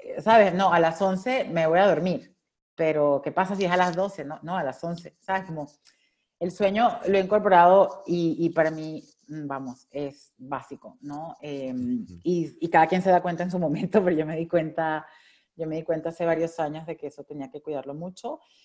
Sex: female